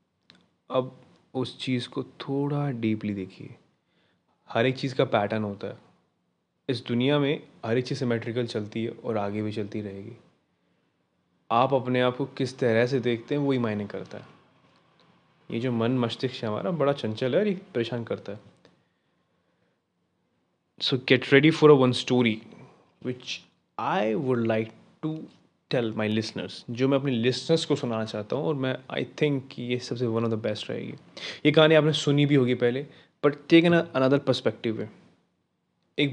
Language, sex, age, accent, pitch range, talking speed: Hindi, male, 20-39, native, 115-140 Hz, 165 wpm